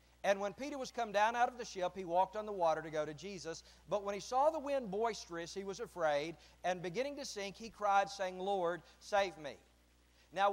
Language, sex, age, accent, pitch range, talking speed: English, male, 40-59, American, 185-250 Hz, 230 wpm